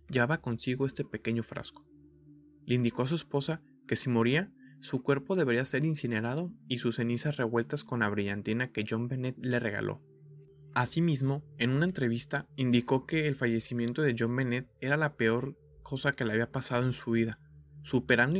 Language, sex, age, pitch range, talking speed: Spanish, male, 20-39, 115-145 Hz, 175 wpm